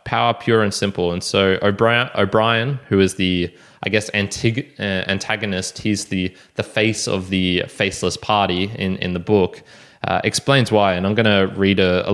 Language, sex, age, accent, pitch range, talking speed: English, male, 20-39, Australian, 95-115 Hz, 185 wpm